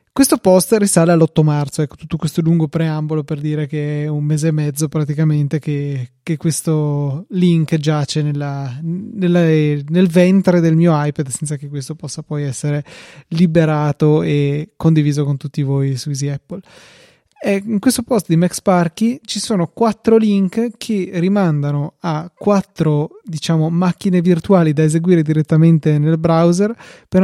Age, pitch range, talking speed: 20-39, 155-185 Hz, 150 wpm